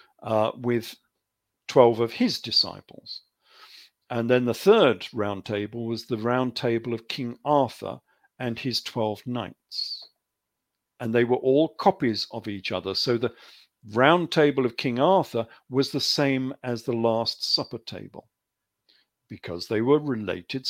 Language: English